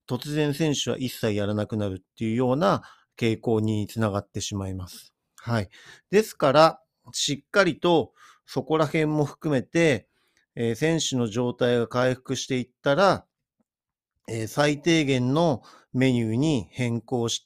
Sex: male